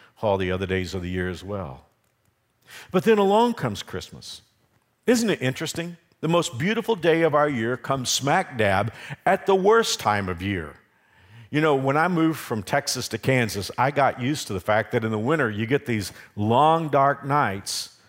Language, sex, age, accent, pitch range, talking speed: English, male, 50-69, American, 115-155 Hz, 190 wpm